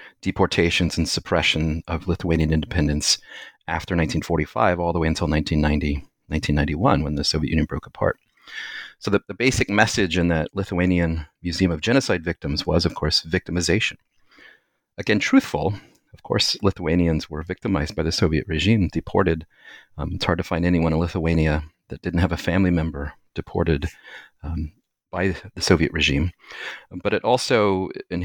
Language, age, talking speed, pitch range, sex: English, 40-59, 155 wpm, 80-95 Hz, male